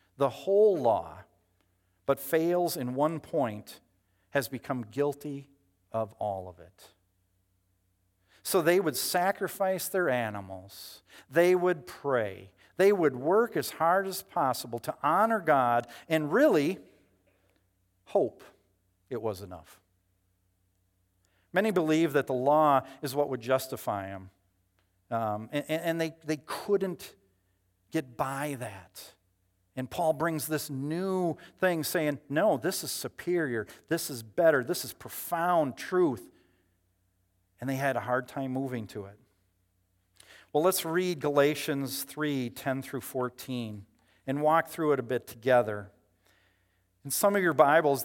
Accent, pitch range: American, 95-155 Hz